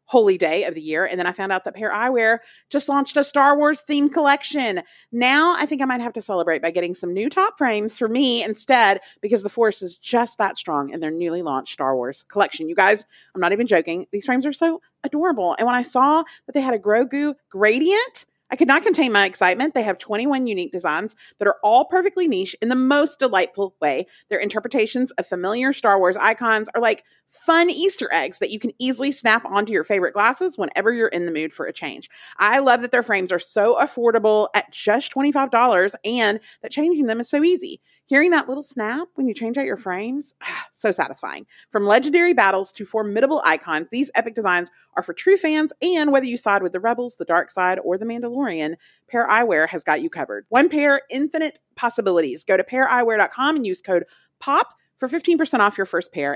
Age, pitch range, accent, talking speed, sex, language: 40-59, 200-285 Hz, American, 215 wpm, female, English